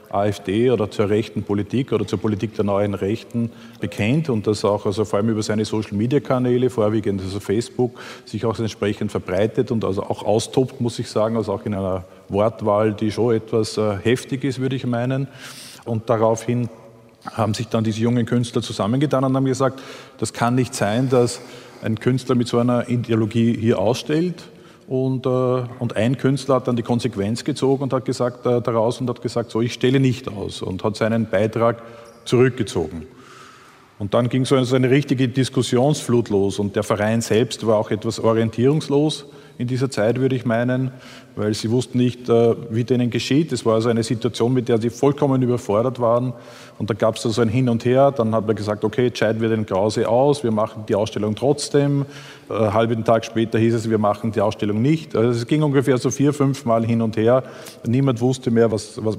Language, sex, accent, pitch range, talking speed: German, male, Austrian, 110-130 Hz, 195 wpm